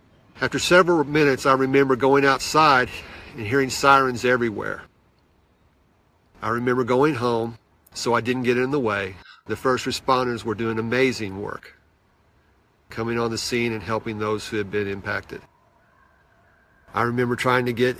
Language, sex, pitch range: English, male, 100-125 Hz